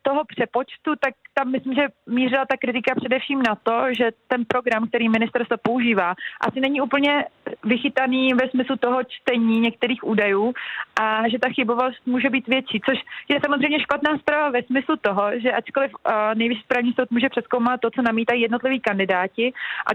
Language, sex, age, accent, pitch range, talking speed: Czech, female, 30-49, native, 225-255 Hz, 170 wpm